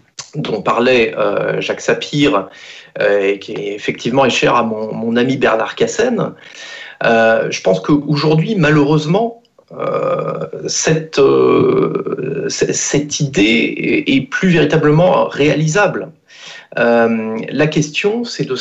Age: 40-59